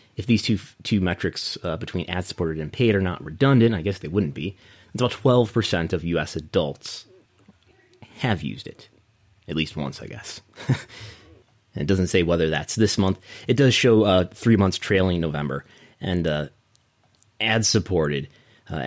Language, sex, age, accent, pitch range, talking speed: English, male, 30-49, American, 95-115 Hz, 165 wpm